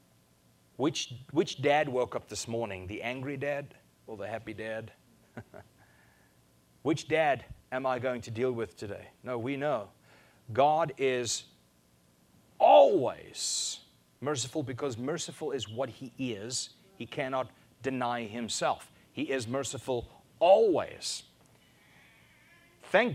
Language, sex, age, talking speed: English, male, 30-49, 115 wpm